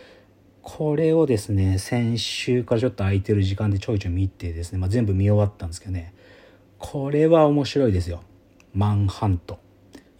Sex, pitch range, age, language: male, 100-145 Hz, 40-59, Japanese